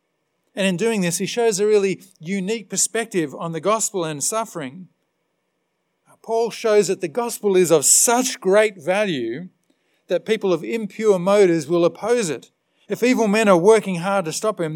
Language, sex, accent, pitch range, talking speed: English, male, Australian, 170-215 Hz, 170 wpm